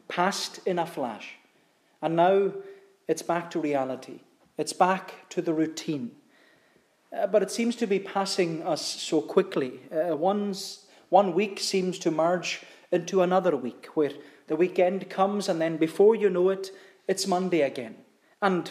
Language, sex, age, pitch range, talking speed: English, male, 30-49, 155-195 Hz, 155 wpm